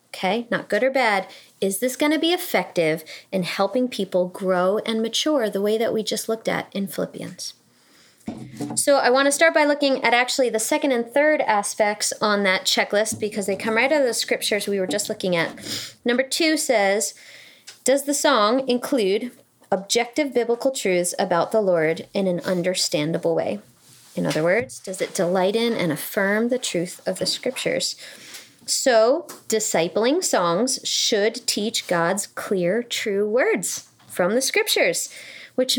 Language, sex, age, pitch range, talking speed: English, female, 20-39, 195-265 Hz, 170 wpm